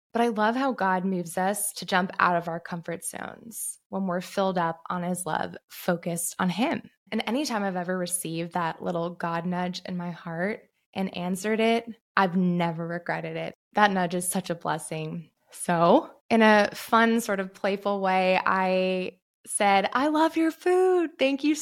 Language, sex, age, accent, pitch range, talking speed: English, female, 20-39, American, 180-220 Hz, 180 wpm